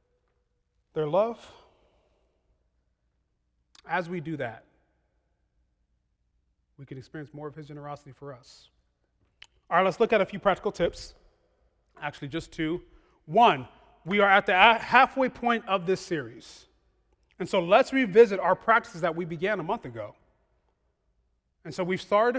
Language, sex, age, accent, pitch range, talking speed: English, male, 30-49, American, 145-235 Hz, 140 wpm